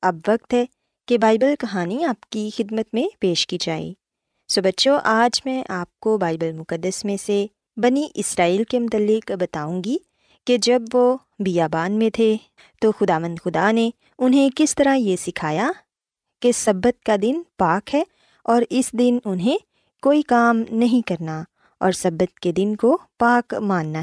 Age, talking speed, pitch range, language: 20-39, 165 wpm, 185-260 Hz, Urdu